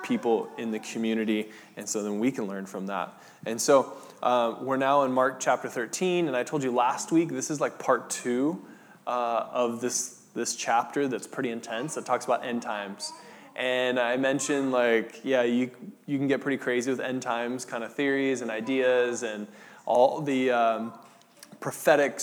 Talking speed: 185 wpm